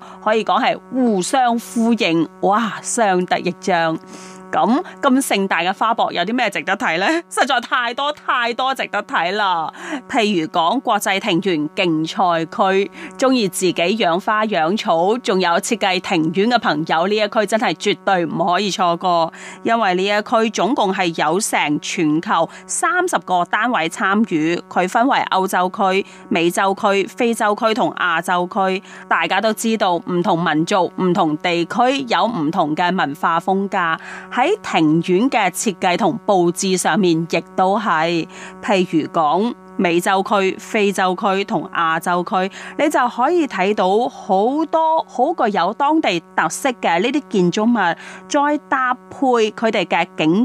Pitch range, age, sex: 180-230 Hz, 30-49, female